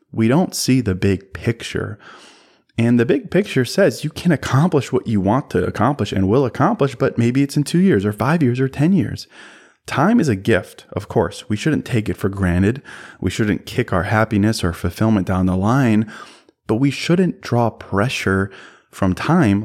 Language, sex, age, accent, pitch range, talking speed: English, male, 20-39, American, 100-135 Hz, 190 wpm